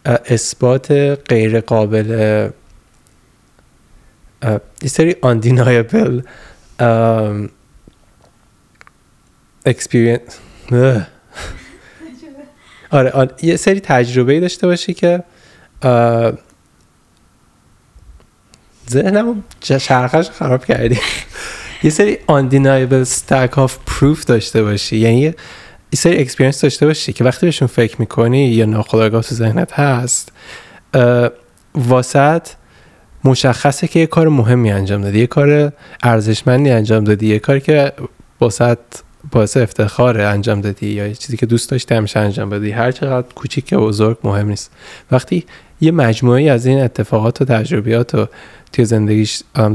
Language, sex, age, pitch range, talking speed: Persian, male, 20-39, 110-140 Hz, 105 wpm